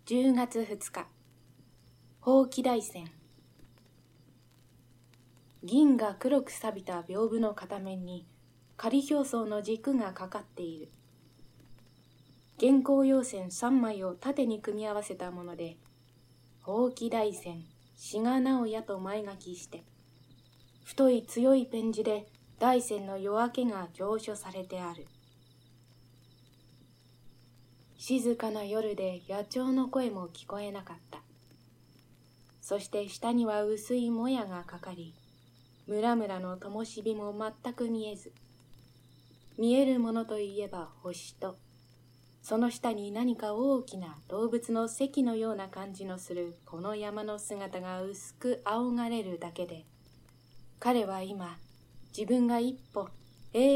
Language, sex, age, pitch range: Japanese, female, 20-39, 150-230 Hz